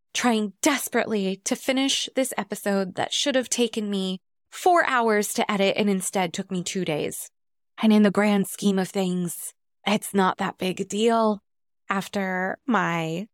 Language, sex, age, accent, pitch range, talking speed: English, female, 20-39, American, 185-235 Hz, 160 wpm